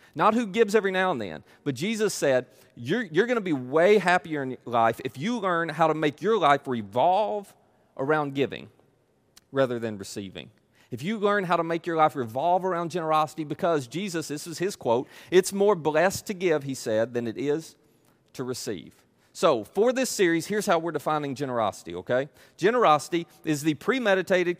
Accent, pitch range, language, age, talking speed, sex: American, 130-185 Hz, English, 40-59, 185 wpm, male